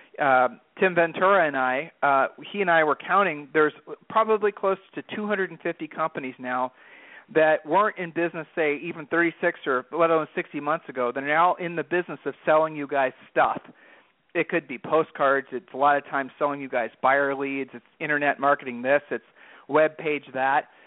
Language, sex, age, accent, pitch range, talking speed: English, male, 40-59, American, 140-170 Hz, 180 wpm